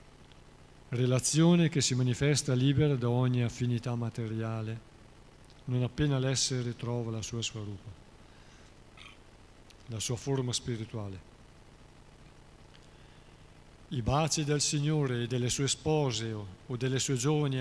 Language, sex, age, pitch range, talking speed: Italian, male, 50-69, 110-135 Hz, 110 wpm